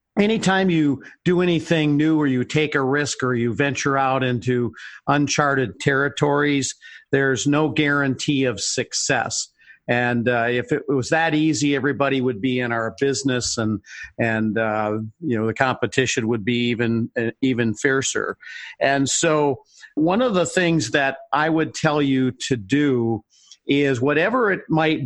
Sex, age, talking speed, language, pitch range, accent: male, 50-69, 155 wpm, English, 125-150 Hz, American